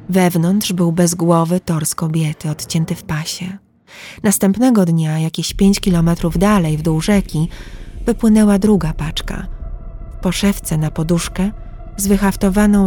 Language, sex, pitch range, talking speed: Polish, female, 160-195 Hz, 125 wpm